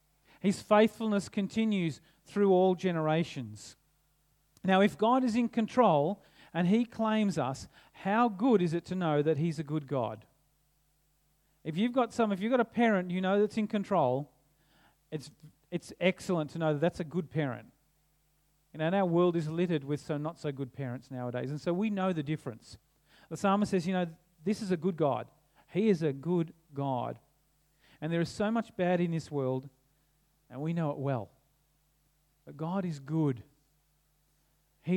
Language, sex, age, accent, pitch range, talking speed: English, male, 40-59, Australian, 145-190 Hz, 175 wpm